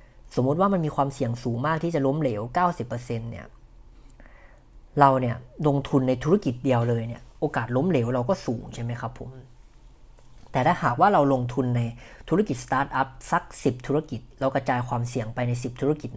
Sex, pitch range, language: female, 120-150 Hz, Thai